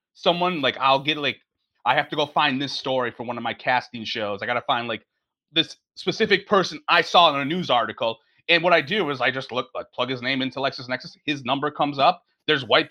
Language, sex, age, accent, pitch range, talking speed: English, male, 30-49, American, 145-210 Hz, 245 wpm